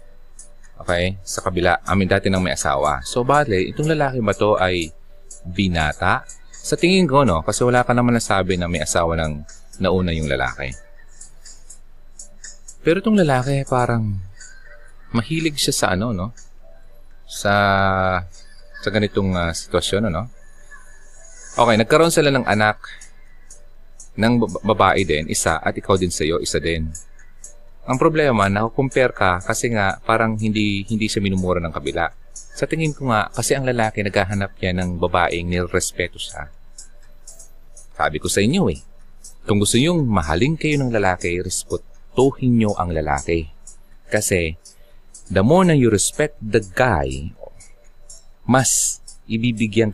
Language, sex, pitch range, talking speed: Filipino, male, 85-120 Hz, 140 wpm